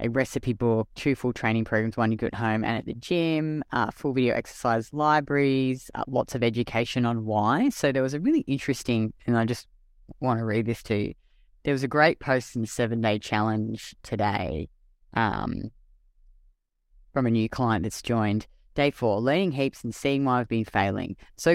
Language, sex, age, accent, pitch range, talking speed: English, female, 30-49, Australian, 110-130 Hz, 195 wpm